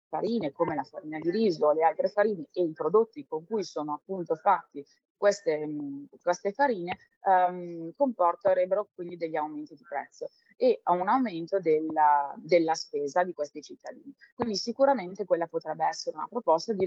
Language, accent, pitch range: Italian, native, 160-245 Hz